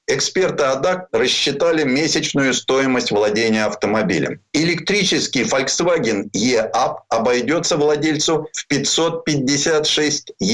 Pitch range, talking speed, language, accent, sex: 140-225 Hz, 80 wpm, Russian, native, male